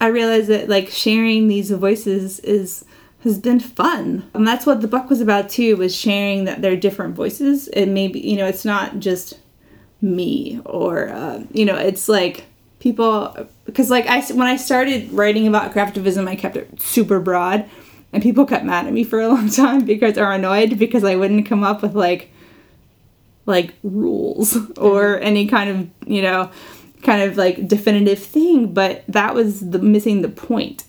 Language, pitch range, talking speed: English, 195-240 Hz, 185 wpm